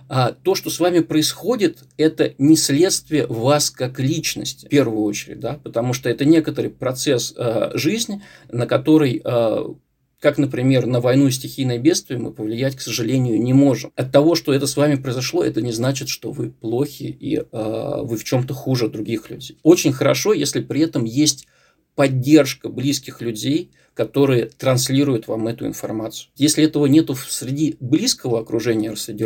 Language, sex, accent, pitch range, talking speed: Russian, male, native, 120-150 Hz, 160 wpm